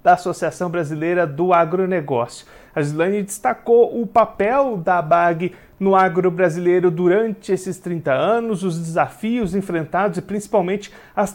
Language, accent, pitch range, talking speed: Portuguese, Brazilian, 175-215 Hz, 125 wpm